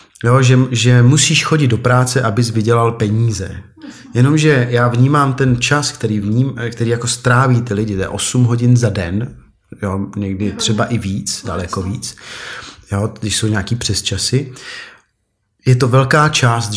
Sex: male